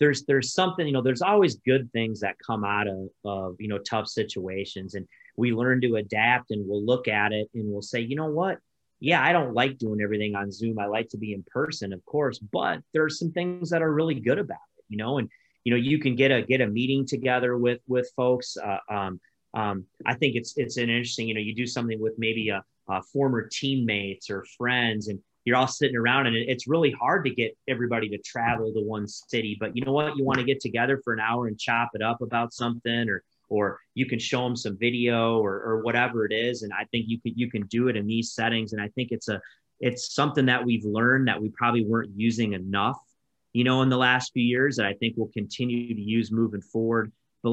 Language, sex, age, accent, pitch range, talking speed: English, male, 30-49, American, 105-125 Hz, 240 wpm